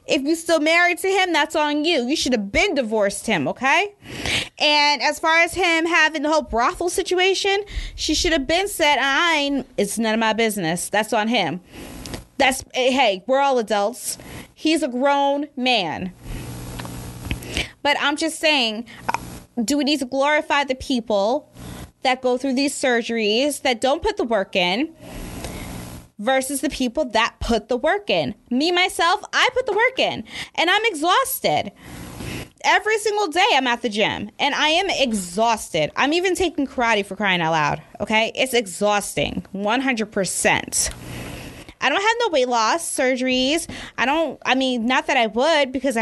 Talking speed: 165 wpm